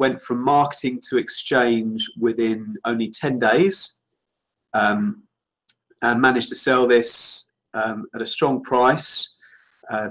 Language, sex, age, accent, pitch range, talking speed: English, male, 30-49, British, 115-145 Hz, 125 wpm